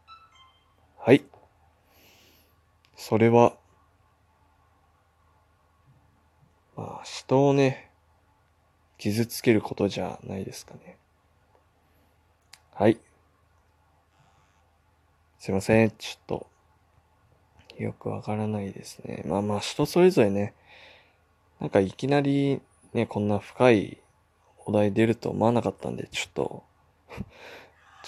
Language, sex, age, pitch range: Japanese, male, 20-39, 90-115 Hz